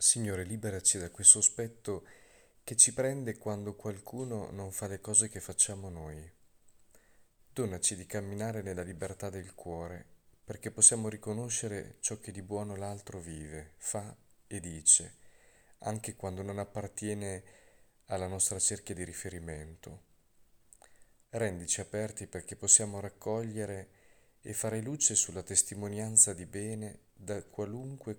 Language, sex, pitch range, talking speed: Italian, male, 90-110 Hz, 125 wpm